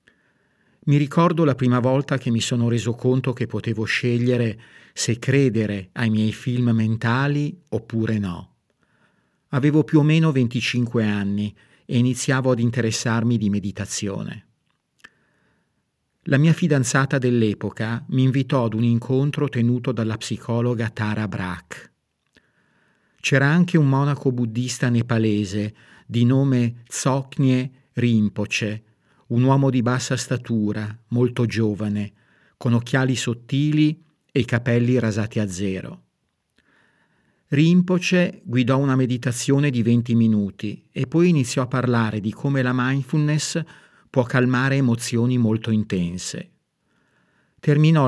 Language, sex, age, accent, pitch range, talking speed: Italian, male, 50-69, native, 115-135 Hz, 120 wpm